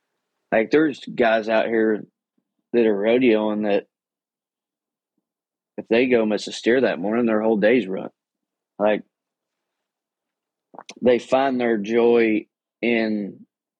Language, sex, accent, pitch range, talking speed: English, male, American, 105-115 Hz, 115 wpm